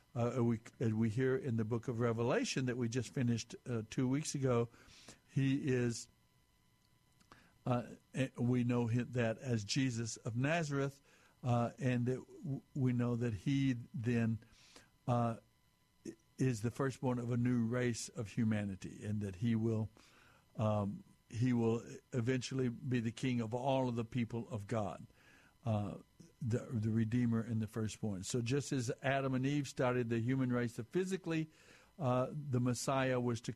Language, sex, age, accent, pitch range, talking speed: English, male, 60-79, American, 115-140 Hz, 160 wpm